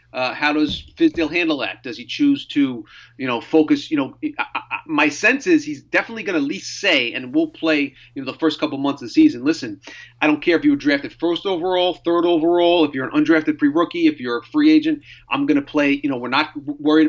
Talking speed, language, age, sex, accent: 240 wpm, English, 30-49, male, American